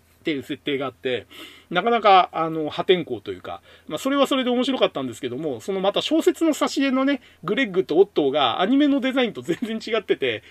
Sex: male